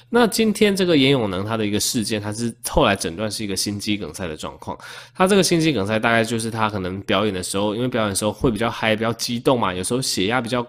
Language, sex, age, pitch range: Chinese, male, 20-39, 100-130 Hz